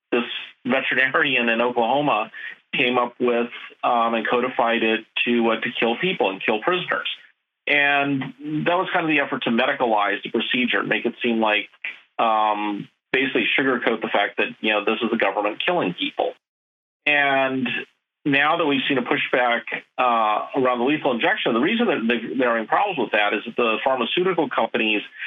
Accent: American